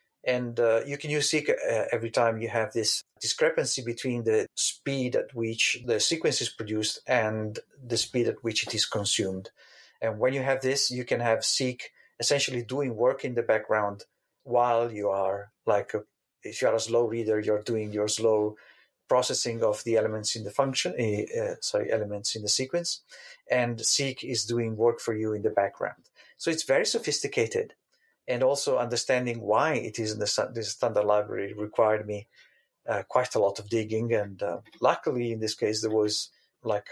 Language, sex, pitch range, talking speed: English, male, 105-125 Hz, 180 wpm